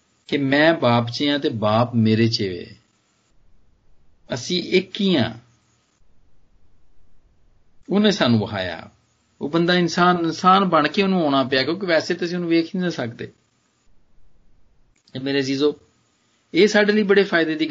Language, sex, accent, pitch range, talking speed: Hindi, male, native, 105-150 Hz, 130 wpm